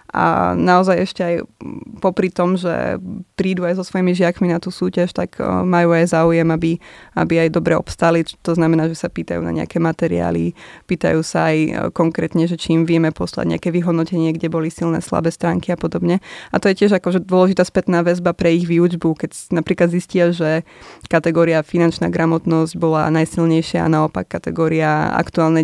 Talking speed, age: 175 wpm, 20-39